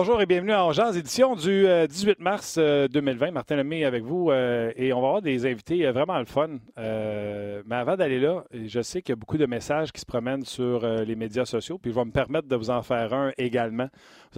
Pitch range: 115-140 Hz